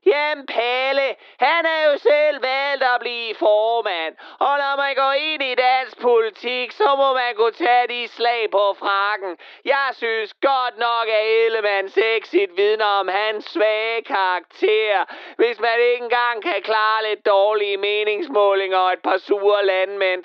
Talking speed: 155 wpm